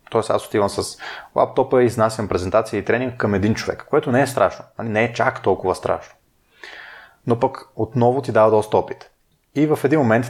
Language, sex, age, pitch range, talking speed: Bulgarian, male, 30-49, 100-125 Hz, 200 wpm